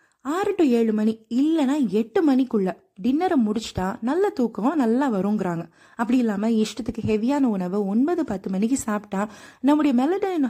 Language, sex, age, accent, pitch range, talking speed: Tamil, female, 20-39, native, 220-300 Hz, 135 wpm